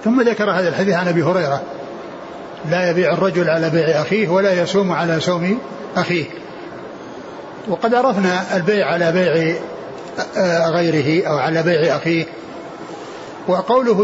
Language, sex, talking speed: Arabic, male, 125 wpm